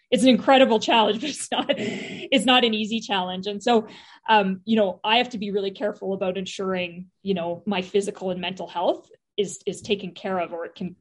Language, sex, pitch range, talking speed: English, female, 190-220 Hz, 220 wpm